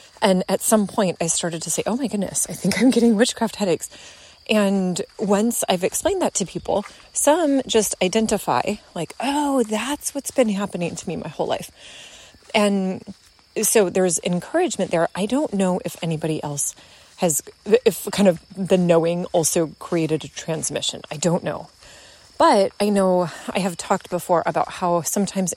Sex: female